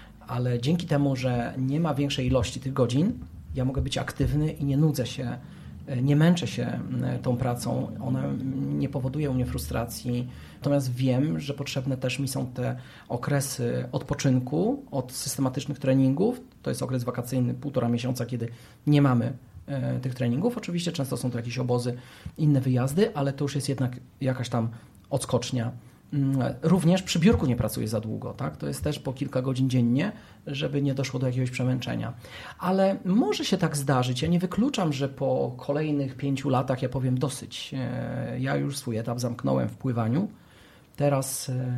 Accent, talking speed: native, 165 wpm